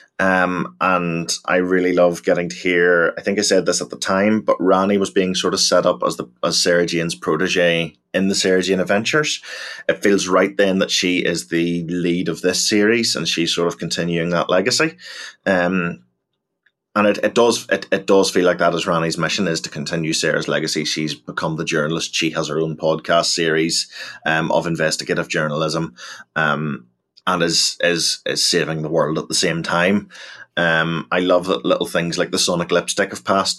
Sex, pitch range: male, 85-95 Hz